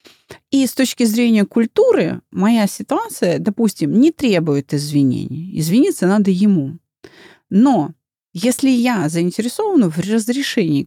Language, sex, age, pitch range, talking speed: Russian, female, 30-49, 180-255 Hz, 110 wpm